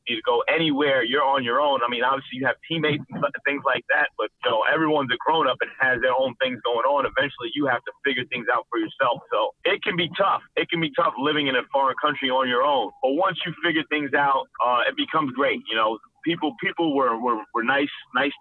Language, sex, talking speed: English, male, 250 wpm